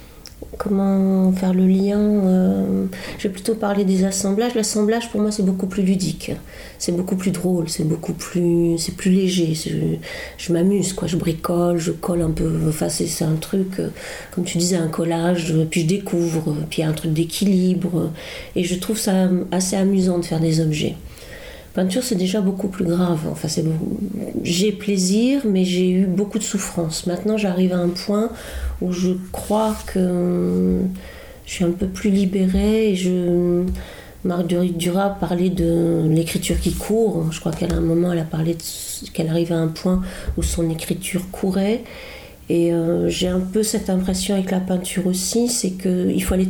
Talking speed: 185 wpm